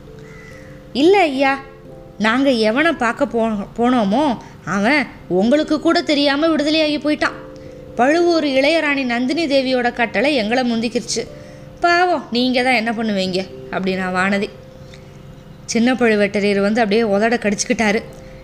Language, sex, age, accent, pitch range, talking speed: Tamil, female, 20-39, native, 225-285 Hz, 110 wpm